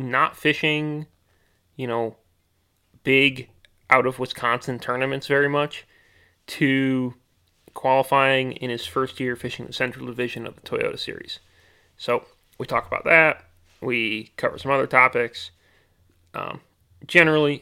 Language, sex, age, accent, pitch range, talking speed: English, male, 20-39, American, 115-145 Hz, 125 wpm